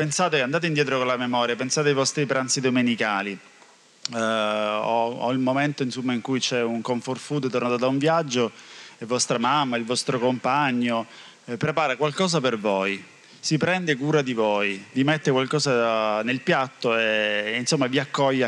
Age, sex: 20-39, male